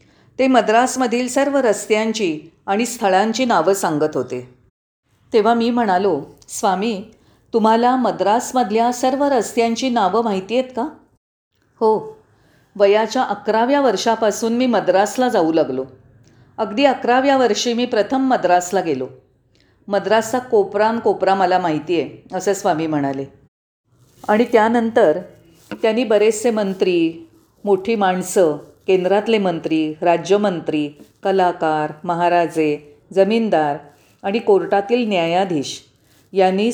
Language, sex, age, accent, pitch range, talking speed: Marathi, female, 40-59, native, 165-230 Hz, 100 wpm